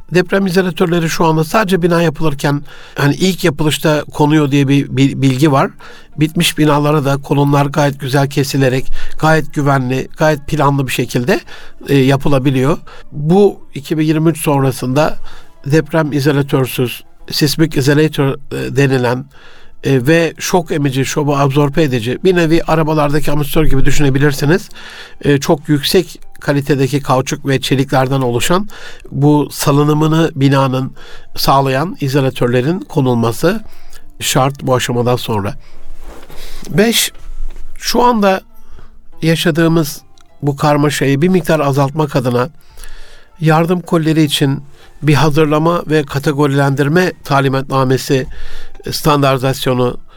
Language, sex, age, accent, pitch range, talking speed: Turkish, male, 60-79, native, 135-160 Hz, 100 wpm